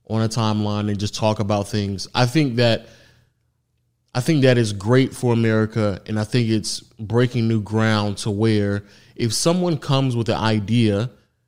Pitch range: 110-135 Hz